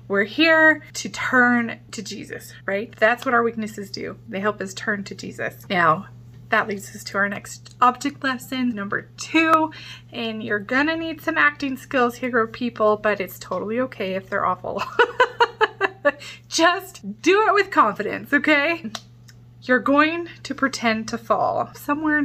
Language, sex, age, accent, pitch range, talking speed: English, female, 20-39, American, 205-285 Hz, 155 wpm